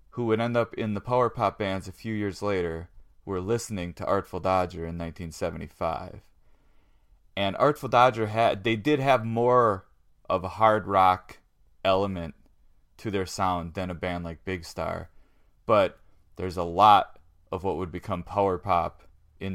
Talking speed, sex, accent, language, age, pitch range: 165 wpm, male, American, English, 30-49, 85-105 Hz